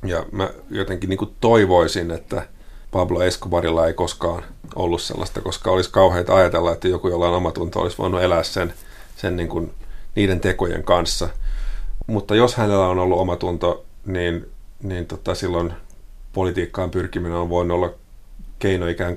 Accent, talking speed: native, 140 wpm